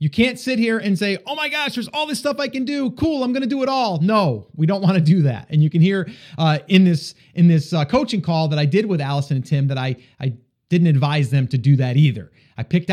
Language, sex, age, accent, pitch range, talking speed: English, male, 30-49, American, 150-200 Hz, 285 wpm